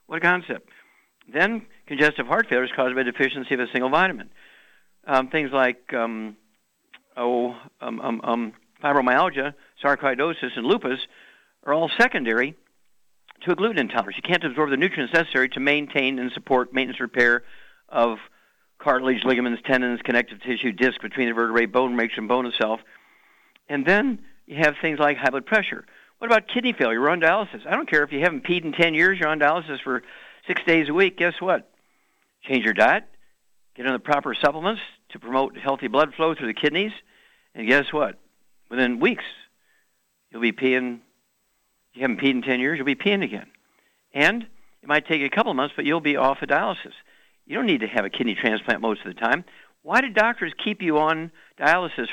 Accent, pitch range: American, 125-160 Hz